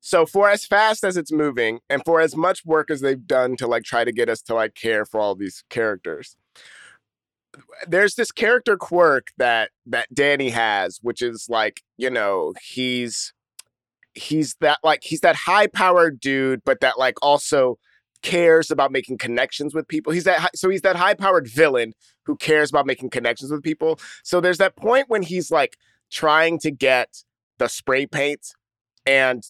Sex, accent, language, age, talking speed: male, American, English, 30-49, 185 wpm